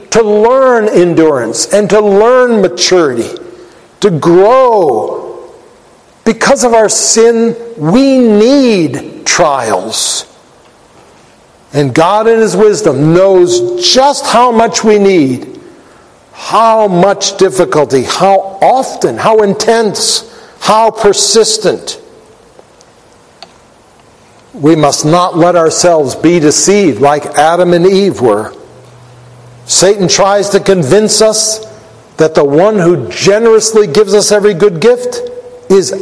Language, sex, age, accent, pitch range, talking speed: English, male, 60-79, American, 170-225 Hz, 105 wpm